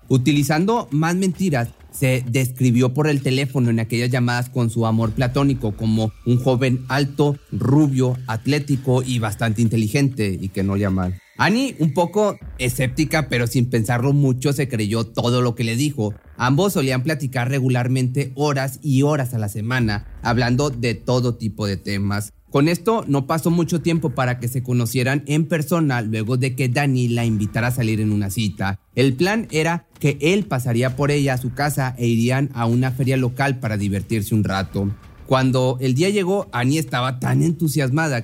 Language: Spanish